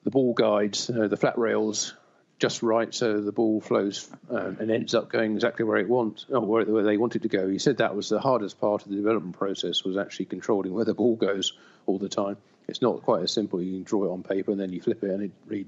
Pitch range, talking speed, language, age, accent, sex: 100-115 Hz, 270 wpm, English, 50-69, British, male